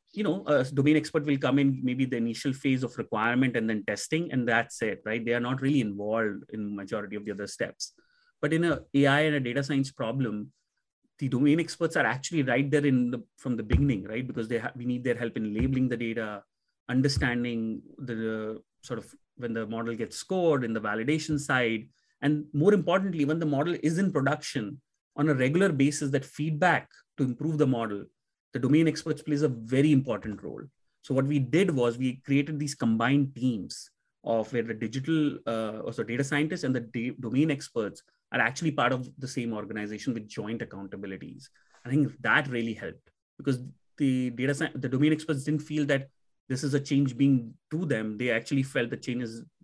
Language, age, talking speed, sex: English, 30-49, 200 wpm, male